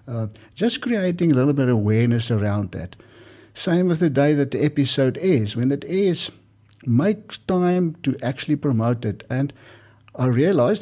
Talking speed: 165 wpm